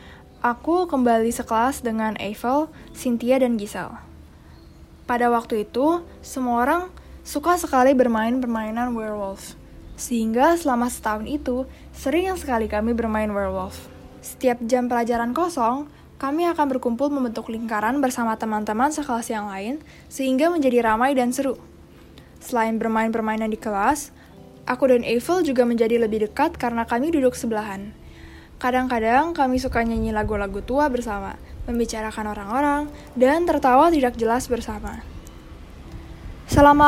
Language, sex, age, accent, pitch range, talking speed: Indonesian, female, 10-29, native, 220-275 Hz, 125 wpm